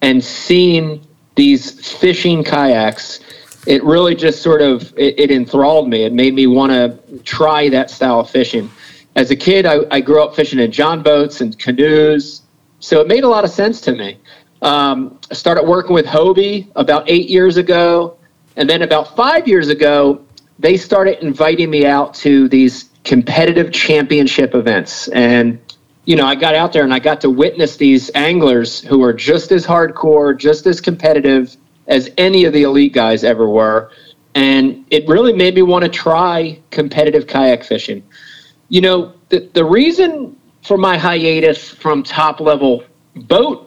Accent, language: American, English